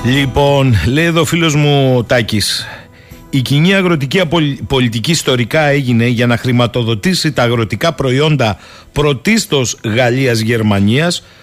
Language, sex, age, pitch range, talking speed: Greek, male, 50-69, 125-175 Hz, 115 wpm